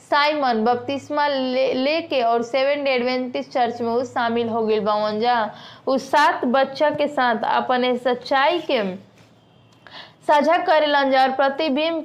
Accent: native